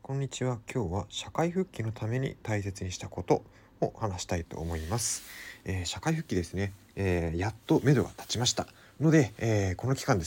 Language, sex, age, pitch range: Japanese, male, 30-49, 95-140 Hz